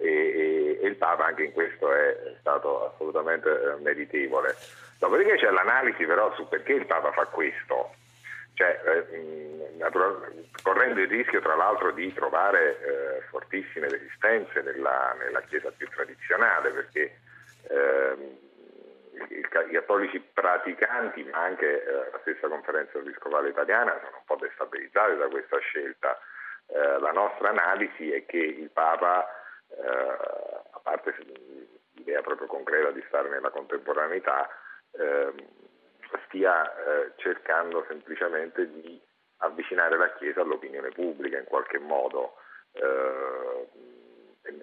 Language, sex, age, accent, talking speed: Italian, male, 50-69, native, 125 wpm